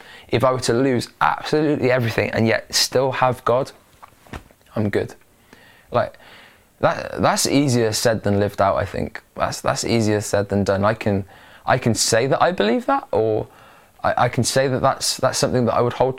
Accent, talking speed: British, 190 wpm